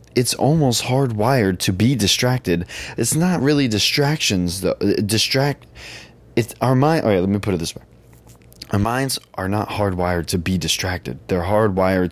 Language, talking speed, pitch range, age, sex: English, 155 wpm, 85-110 Hz, 20-39, male